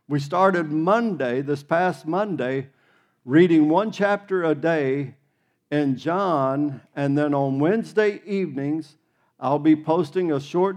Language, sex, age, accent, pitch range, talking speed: English, male, 50-69, American, 140-170 Hz, 130 wpm